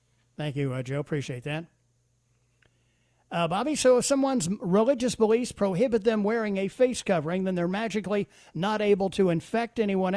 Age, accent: 50-69, American